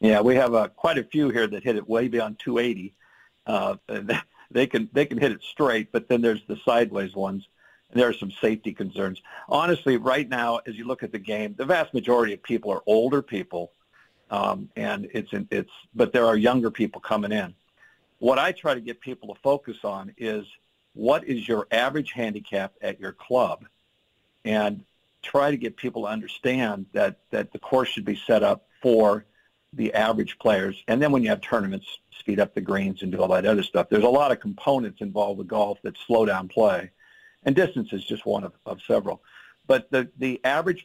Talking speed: 205 wpm